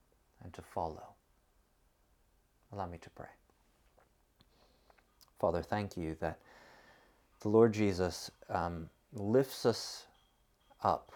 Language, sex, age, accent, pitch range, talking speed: English, male, 30-49, American, 85-115 Hz, 90 wpm